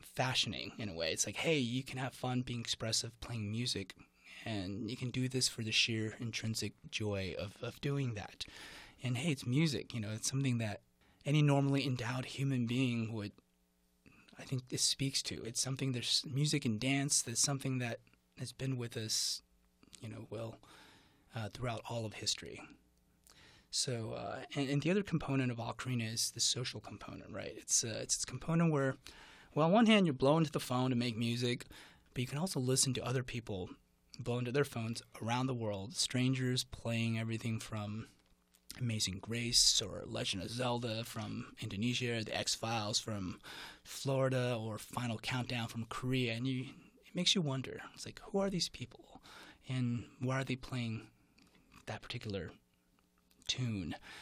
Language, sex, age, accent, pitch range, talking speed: English, male, 20-39, American, 110-130 Hz, 175 wpm